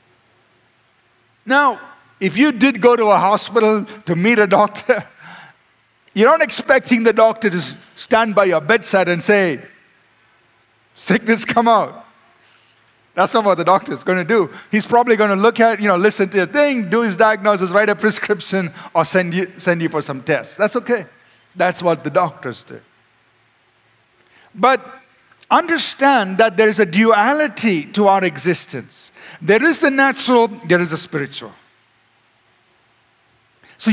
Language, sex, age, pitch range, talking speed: English, male, 50-69, 180-240 Hz, 150 wpm